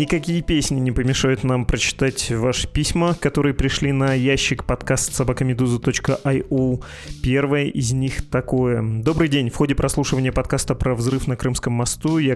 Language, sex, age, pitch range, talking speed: Russian, male, 30-49, 120-140 Hz, 145 wpm